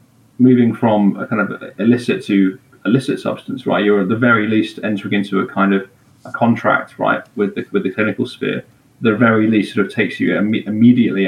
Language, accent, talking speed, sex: English, British, 200 wpm, male